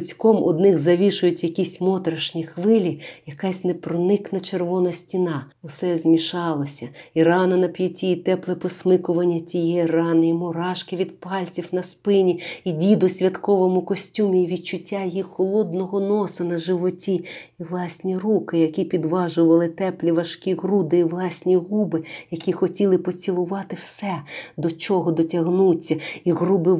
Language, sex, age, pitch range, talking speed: Ukrainian, female, 40-59, 165-185 Hz, 130 wpm